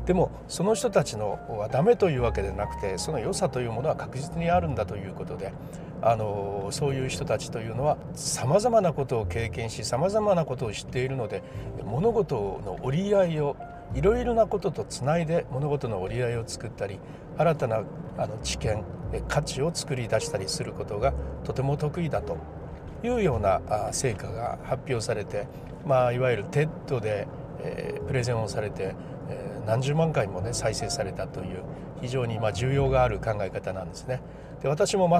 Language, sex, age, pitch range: Japanese, male, 60-79, 110-165 Hz